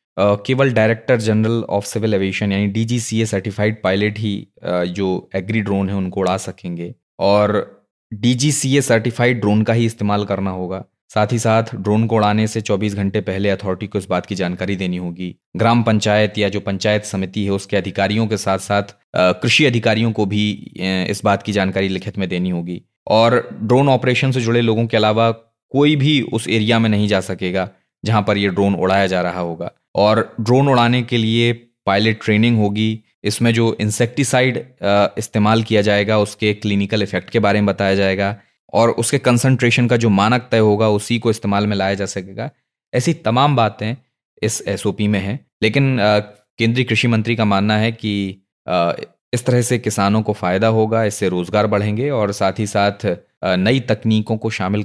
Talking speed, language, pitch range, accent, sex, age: 180 wpm, Hindi, 100-115 Hz, native, male, 20-39